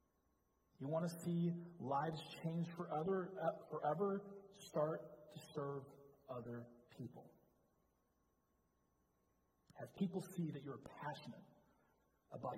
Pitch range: 130-175 Hz